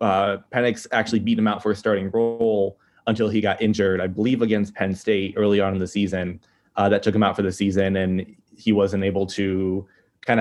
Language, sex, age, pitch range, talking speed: English, male, 20-39, 95-110 Hz, 220 wpm